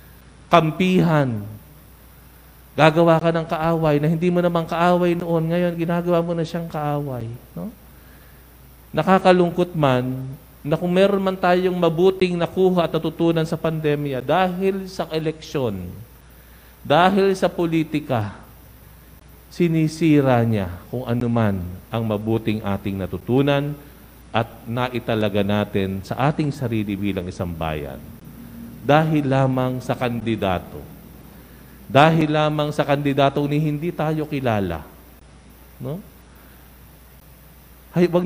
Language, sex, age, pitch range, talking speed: English, male, 50-69, 100-160 Hz, 105 wpm